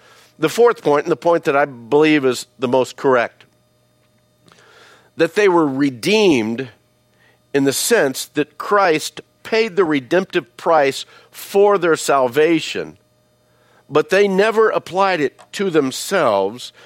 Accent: American